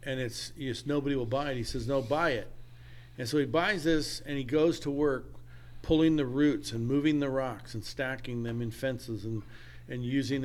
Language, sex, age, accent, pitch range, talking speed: English, male, 50-69, American, 120-160 Hz, 215 wpm